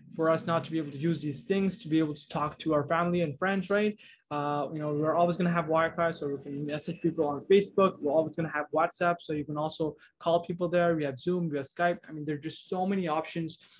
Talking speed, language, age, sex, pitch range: 280 wpm, English, 20-39, male, 145-175 Hz